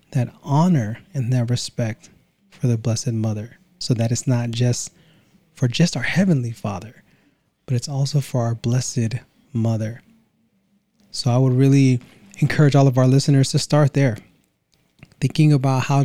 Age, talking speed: 20-39, 155 wpm